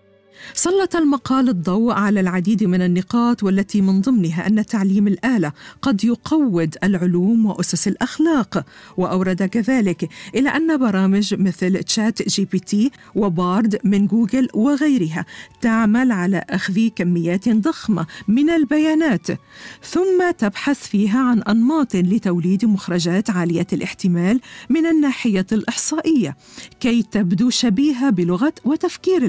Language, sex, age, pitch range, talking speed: Arabic, female, 50-69, 185-240 Hz, 115 wpm